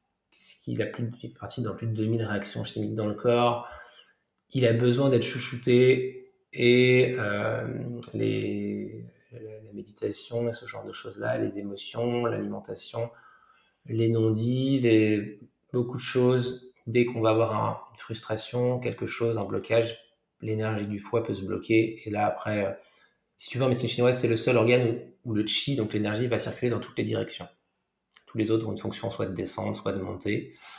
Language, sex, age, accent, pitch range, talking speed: French, male, 20-39, French, 105-120 Hz, 180 wpm